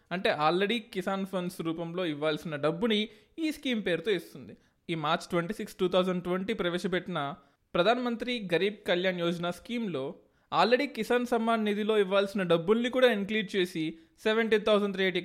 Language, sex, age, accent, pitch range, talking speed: Telugu, male, 20-39, native, 185-230 Hz, 135 wpm